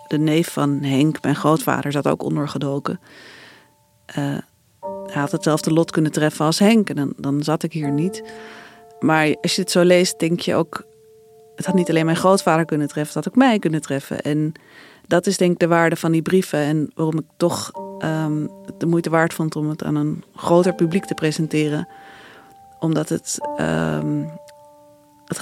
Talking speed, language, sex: 180 wpm, Dutch, female